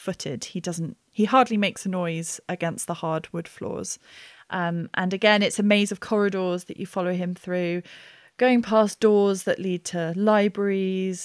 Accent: British